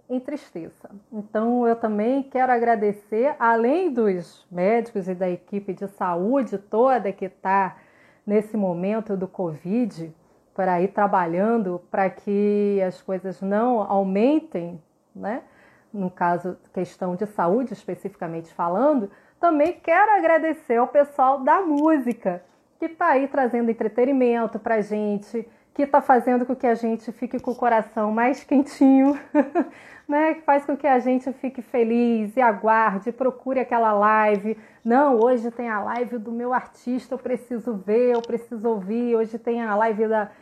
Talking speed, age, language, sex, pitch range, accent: 150 wpm, 30-49, Portuguese, female, 205-260 Hz, Brazilian